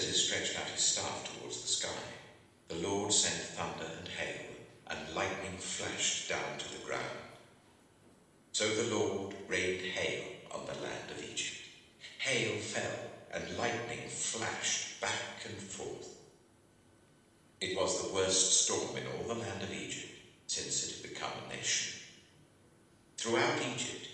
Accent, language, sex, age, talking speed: British, English, male, 60-79, 145 wpm